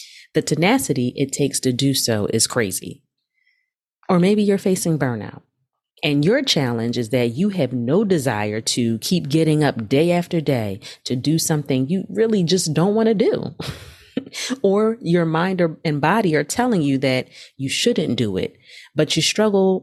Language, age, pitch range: English, 30-49, 130-180 Hz